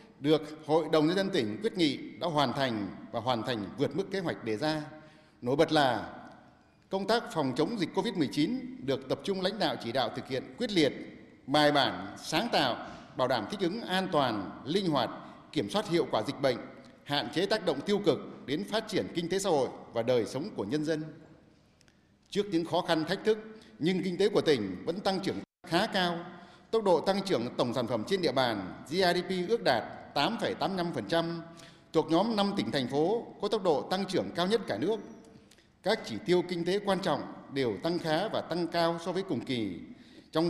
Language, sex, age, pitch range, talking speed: Vietnamese, male, 60-79, 155-195 Hz, 205 wpm